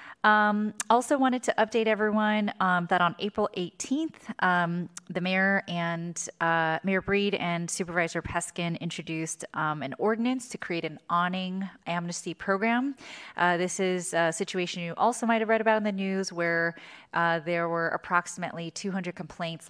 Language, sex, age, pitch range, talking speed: English, female, 20-39, 160-195 Hz, 155 wpm